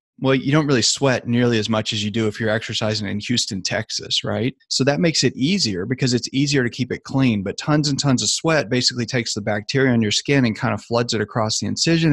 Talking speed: 250 wpm